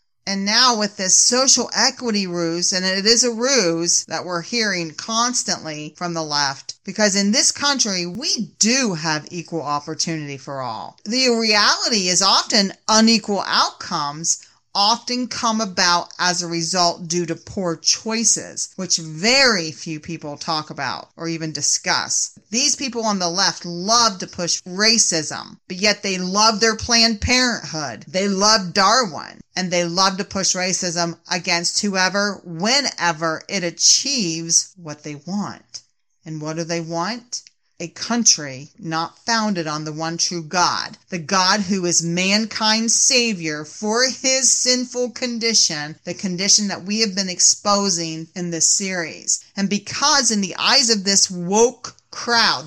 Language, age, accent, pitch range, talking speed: English, 40-59, American, 170-225 Hz, 150 wpm